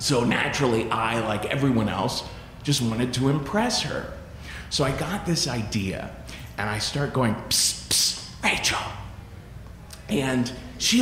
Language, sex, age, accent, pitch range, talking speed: English, male, 40-59, American, 115-185 Hz, 135 wpm